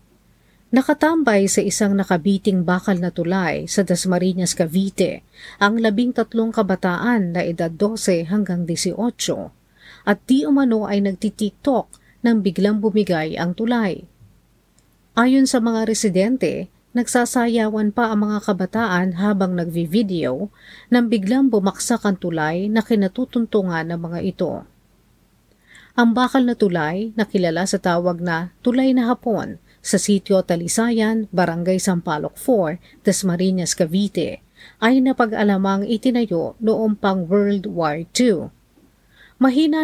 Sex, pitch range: female, 175-225 Hz